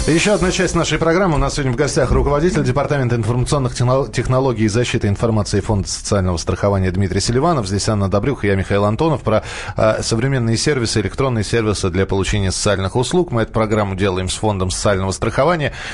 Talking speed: 170 wpm